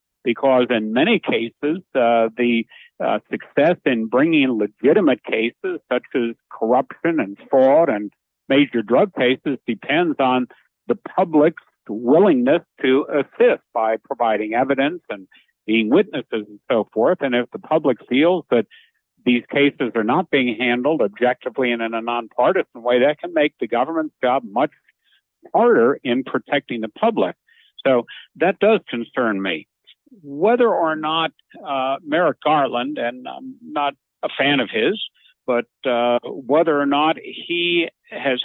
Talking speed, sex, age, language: 145 wpm, male, 60-79, English